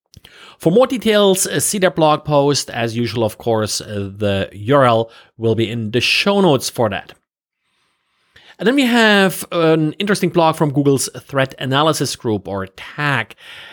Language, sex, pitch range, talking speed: English, male, 125-175 Hz, 155 wpm